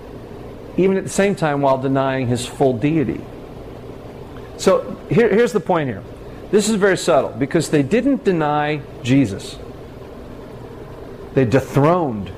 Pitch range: 130-170 Hz